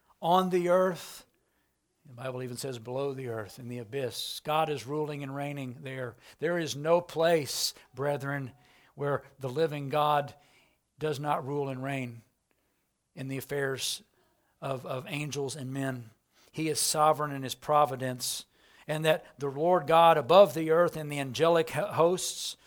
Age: 60-79